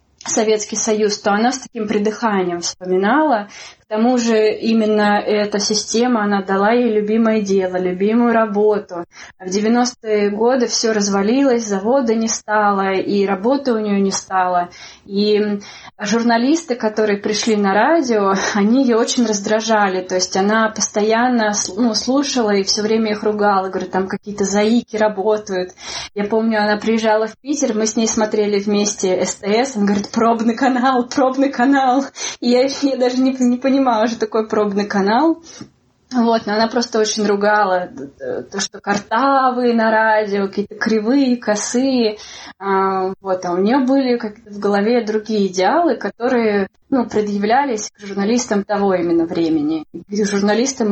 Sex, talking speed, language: female, 145 wpm, Russian